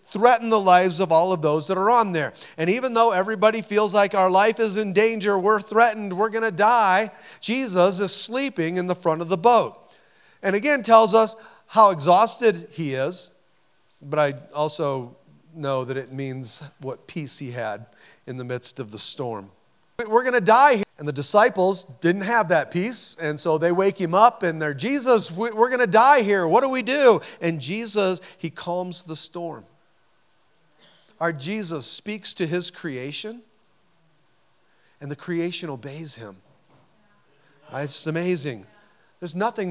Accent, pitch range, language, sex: American, 150-200 Hz, English, male